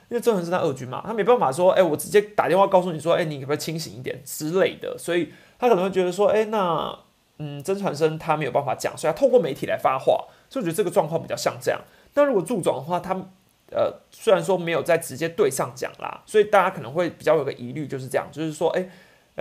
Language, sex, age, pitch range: Chinese, male, 30-49, 150-195 Hz